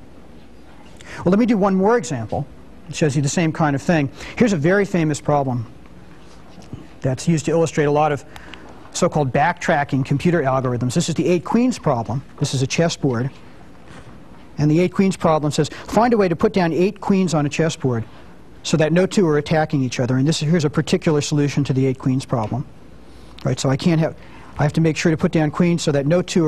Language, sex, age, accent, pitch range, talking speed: English, male, 40-59, American, 135-165 Hz, 220 wpm